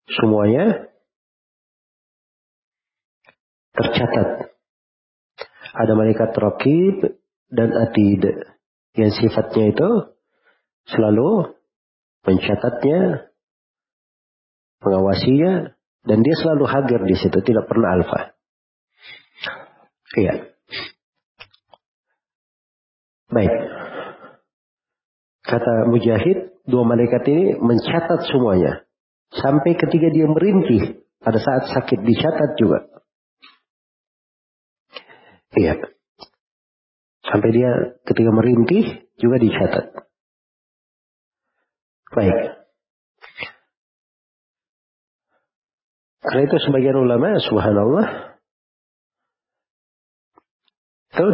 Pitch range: 105-140 Hz